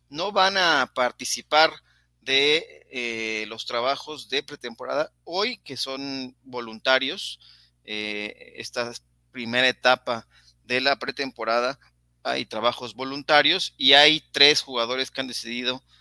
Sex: male